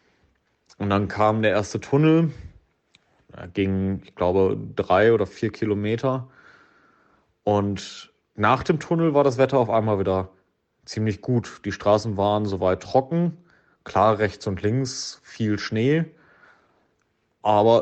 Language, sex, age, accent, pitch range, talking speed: German, male, 30-49, German, 105-135 Hz, 130 wpm